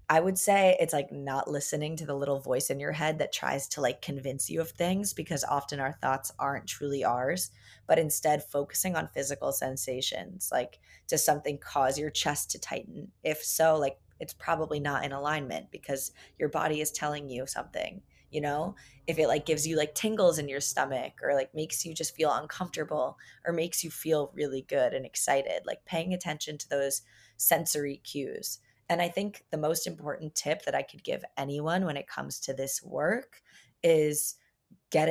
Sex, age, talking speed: female, 20-39, 190 wpm